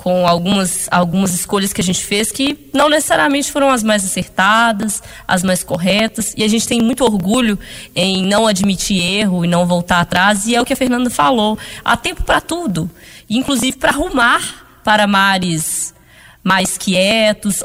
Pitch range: 195-260 Hz